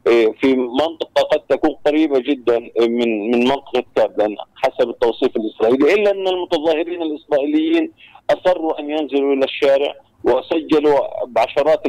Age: 40-59